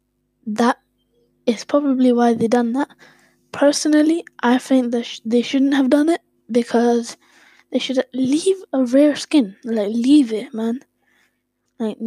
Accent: British